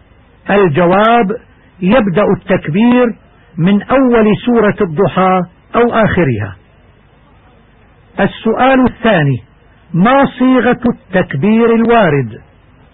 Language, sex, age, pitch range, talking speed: Arabic, male, 50-69, 170-230 Hz, 70 wpm